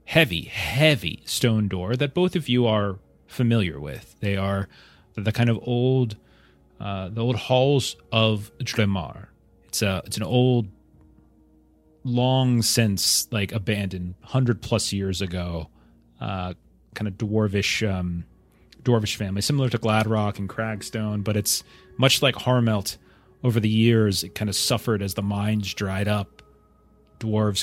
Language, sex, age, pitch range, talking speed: English, male, 30-49, 90-115 Hz, 145 wpm